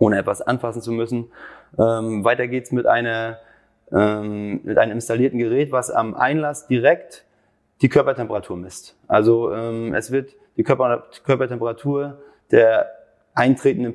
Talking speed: 120 wpm